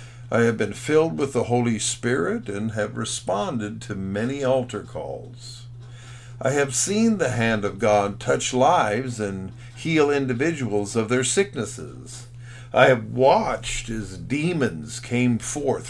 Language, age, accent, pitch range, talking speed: English, 50-69, American, 115-130 Hz, 140 wpm